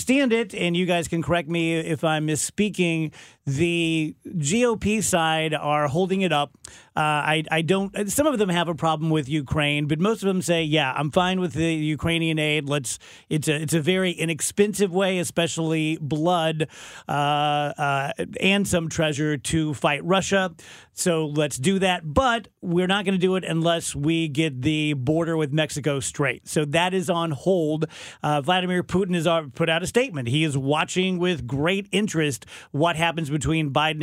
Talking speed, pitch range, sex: 180 wpm, 155-185 Hz, male